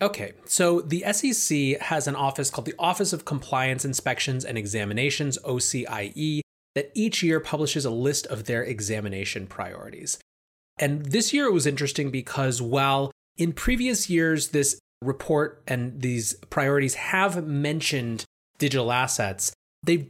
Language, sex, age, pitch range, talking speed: English, male, 30-49, 120-155 Hz, 140 wpm